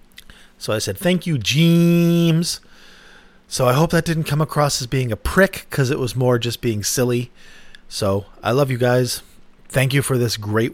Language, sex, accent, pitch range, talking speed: English, male, American, 105-135 Hz, 190 wpm